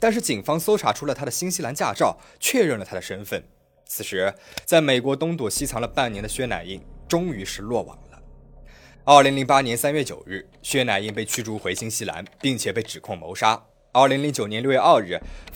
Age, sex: 20-39, male